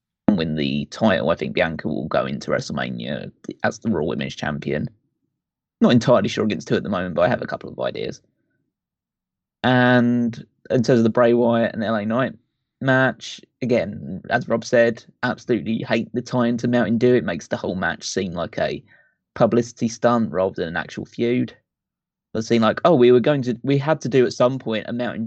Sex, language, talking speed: male, English, 200 wpm